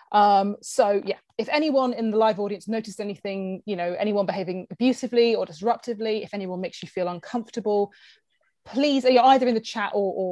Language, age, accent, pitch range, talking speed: English, 30-49, British, 195-255 Hz, 185 wpm